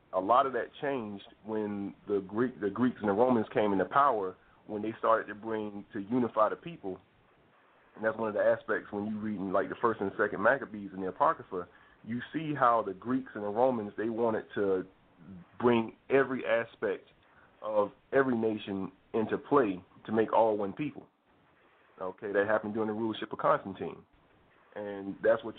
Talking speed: 185 wpm